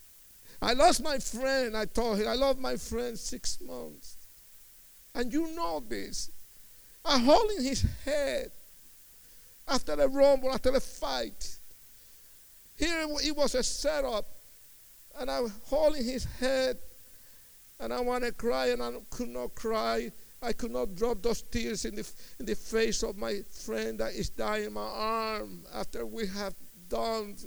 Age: 60-79